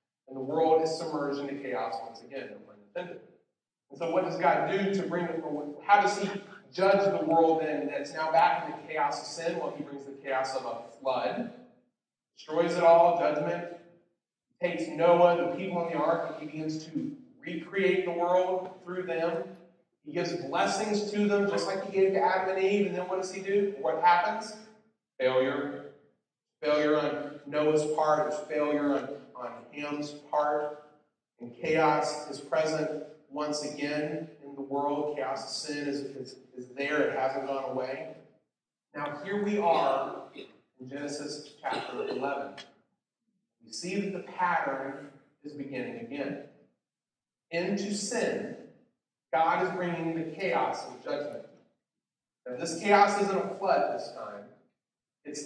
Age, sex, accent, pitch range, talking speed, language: 40-59, male, American, 145-185 Hz, 160 wpm, English